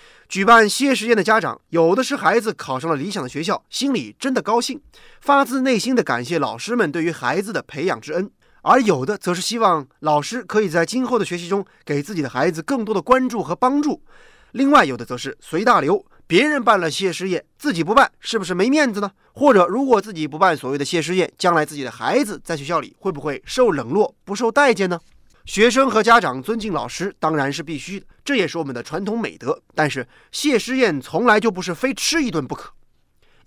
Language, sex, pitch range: Chinese, male, 165-255 Hz